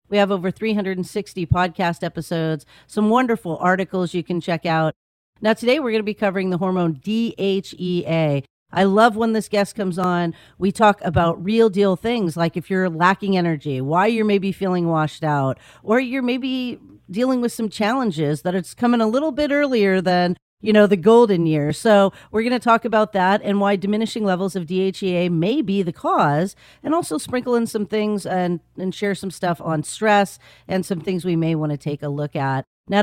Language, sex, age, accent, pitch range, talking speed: English, female, 40-59, American, 170-215 Hz, 200 wpm